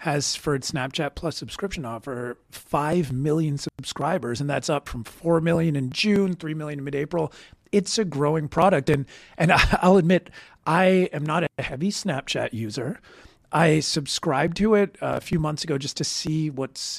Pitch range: 135-175 Hz